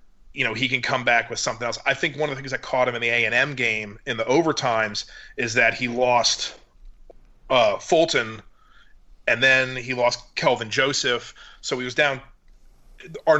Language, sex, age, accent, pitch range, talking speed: English, male, 30-49, American, 125-150 Hz, 195 wpm